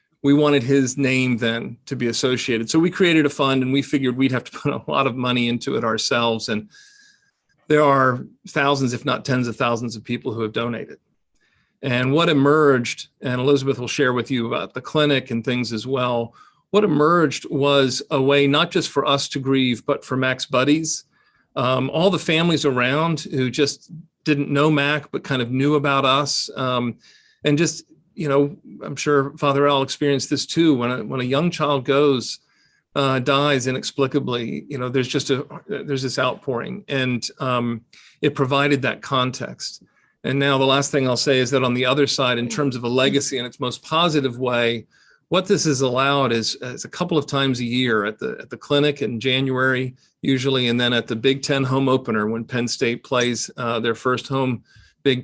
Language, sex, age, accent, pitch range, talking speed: English, male, 40-59, American, 125-145 Hz, 200 wpm